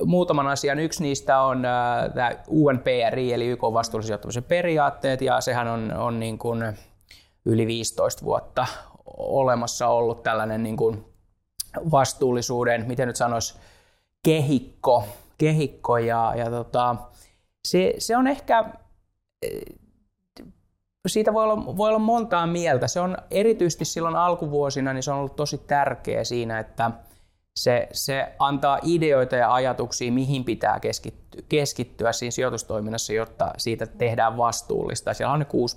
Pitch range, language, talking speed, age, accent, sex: 110-140 Hz, Finnish, 125 wpm, 20-39, native, male